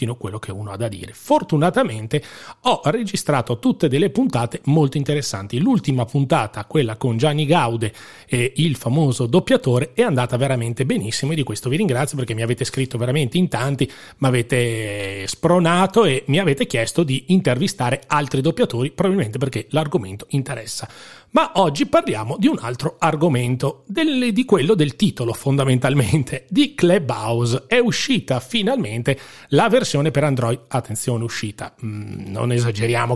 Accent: native